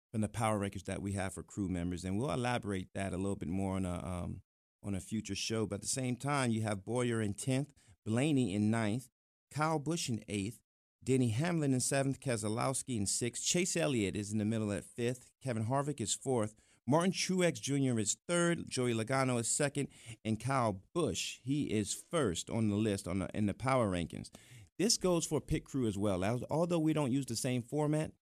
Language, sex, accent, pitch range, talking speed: English, male, American, 105-140 Hz, 210 wpm